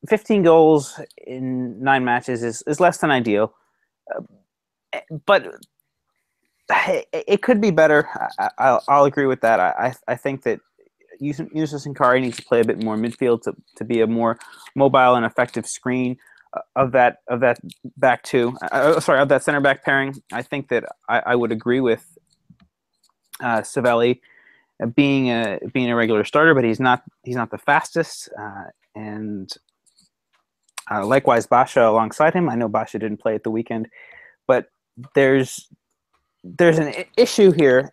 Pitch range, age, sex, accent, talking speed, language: 115-155 Hz, 30-49, male, American, 170 wpm, English